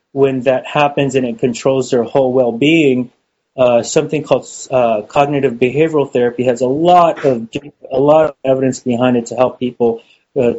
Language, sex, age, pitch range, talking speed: English, male, 30-49, 125-150 Hz, 170 wpm